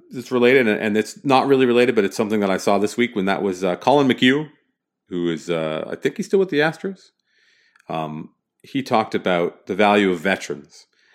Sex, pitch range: male, 85-120 Hz